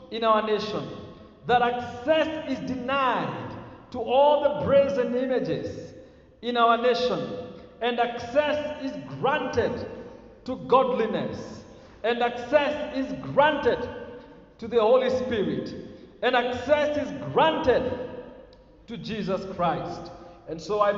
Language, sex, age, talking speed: English, male, 50-69, 110 wpm